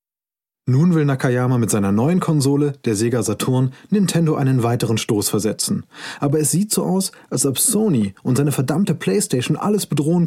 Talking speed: 170 wpm